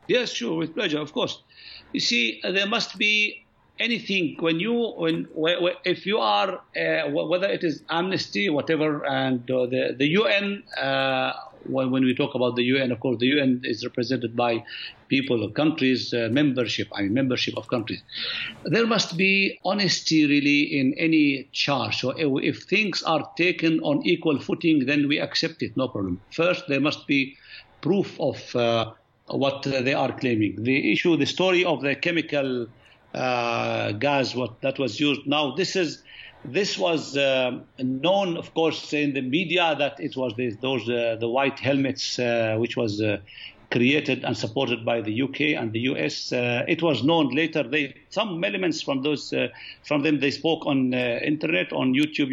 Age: 60-79